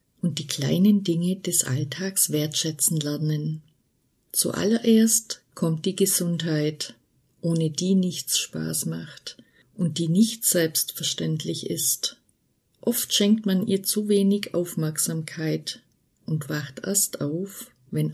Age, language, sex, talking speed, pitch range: 50-69, German, female, 115 wpm, 155-195 Hz